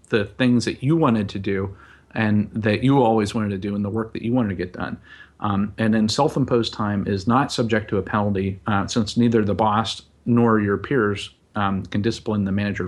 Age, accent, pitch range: 40-59, American, 105-125 Hz